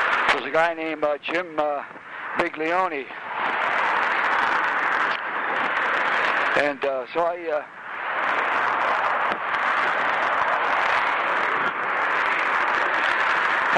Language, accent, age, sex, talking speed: English, American, 60-79, male, 60 wpm